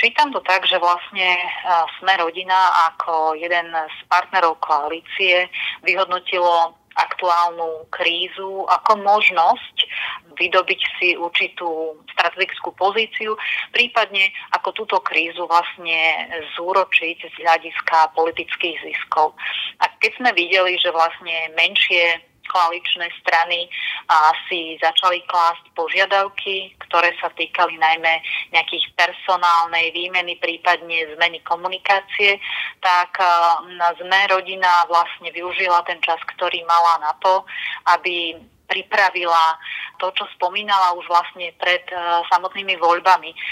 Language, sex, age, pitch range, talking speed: Slovak, female, 30-49, 170-190 Hz, 105 wpm